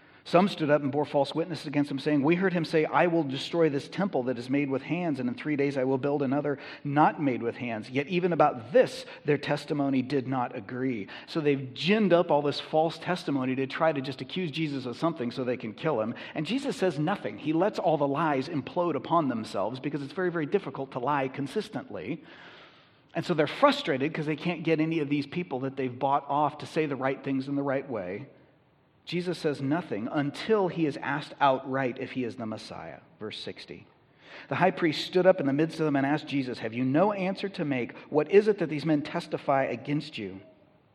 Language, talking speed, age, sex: English, 225 wpm, 40-59, male